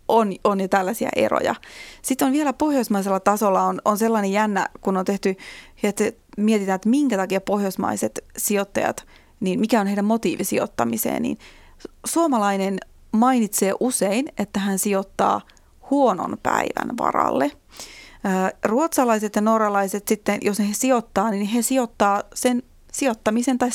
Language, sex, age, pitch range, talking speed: Finnish, female, 30-49, 200-250 Hz, 135 wpm